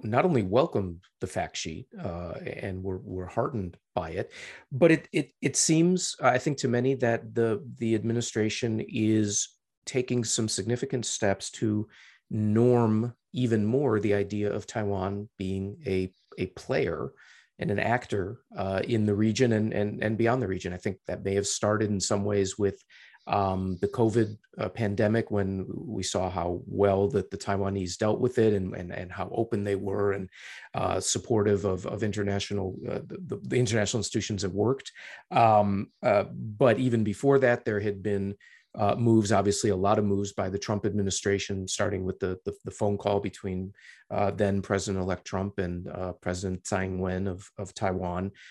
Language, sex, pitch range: English, male, 95-115 Hz